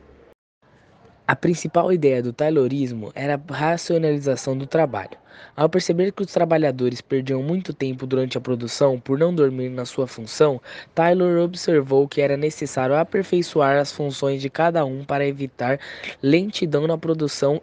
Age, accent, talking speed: 10-29, Brazilian, 145 wpm